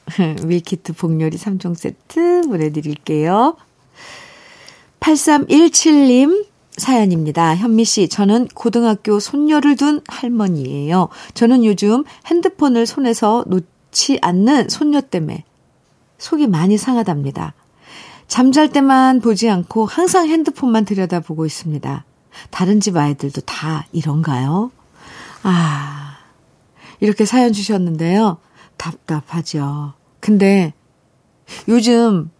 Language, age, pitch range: Korean, 50-69, 170-275 Hz